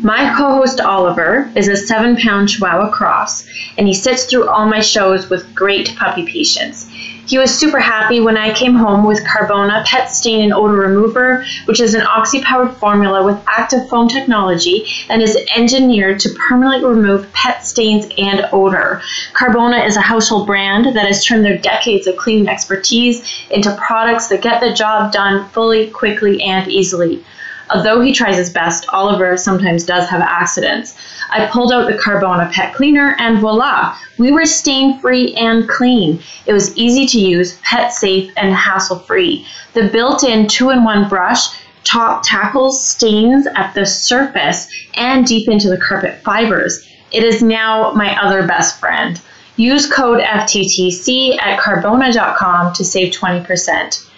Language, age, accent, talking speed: English, 20-39, American, 155 wpm